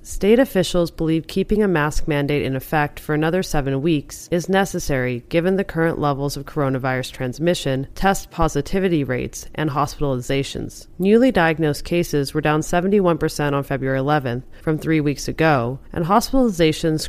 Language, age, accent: English, 30-49, American